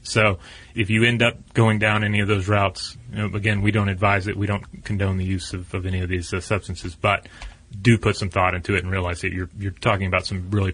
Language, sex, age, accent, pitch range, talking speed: English, male, 30-49, American, 95-115 Hz, 255 wpm